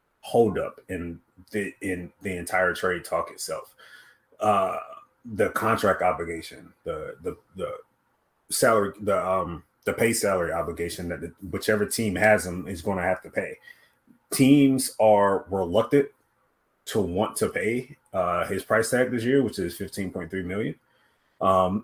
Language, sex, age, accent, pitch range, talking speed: English, male, 30-49, American, 90-120 Hz, 150 wpm